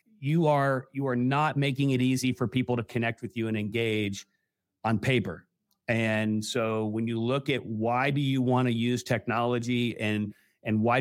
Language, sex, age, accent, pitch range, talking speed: English, male, 40-59, American, 115-140 Hz, 185 wpm